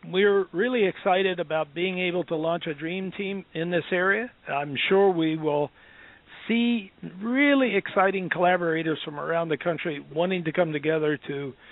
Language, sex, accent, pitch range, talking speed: English, male, American, 155-195 Hz, 160 wpm